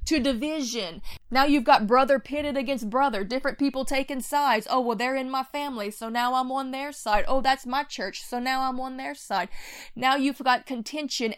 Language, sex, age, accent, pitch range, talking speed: English, female, 20-39, American, 215-265 Hz, 205 wpm